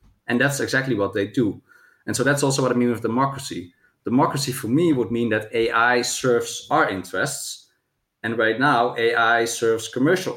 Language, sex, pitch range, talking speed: Finnish, male, 115-135 Hz, 180 wpm